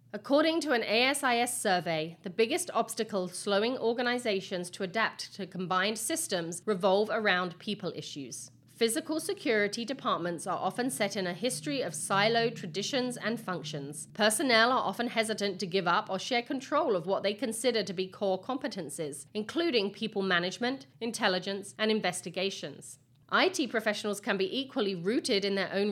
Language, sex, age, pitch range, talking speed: English, female, 40-59, 180-235 Hz, 155 wpm